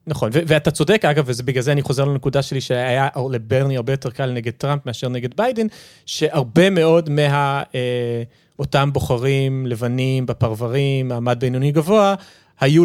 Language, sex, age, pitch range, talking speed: Hebrew, male, 30-49, 120-150 Hz, 150 wpm